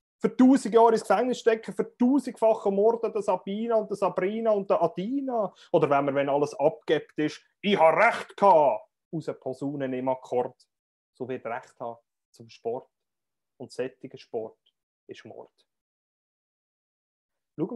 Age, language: 30-49, German